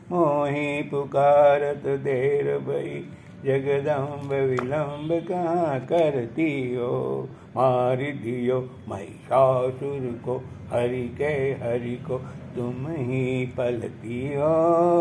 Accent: native